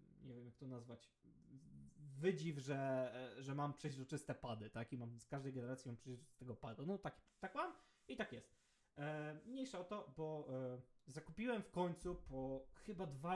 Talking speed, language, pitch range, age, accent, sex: 175 wpm, Polish, 135-175 Hz, 20-39, native, male